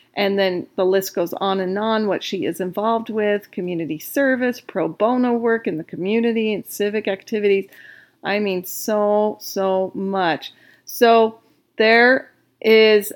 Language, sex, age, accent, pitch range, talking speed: English, female, 40-59, American, 195-240 Hz, 145 wpm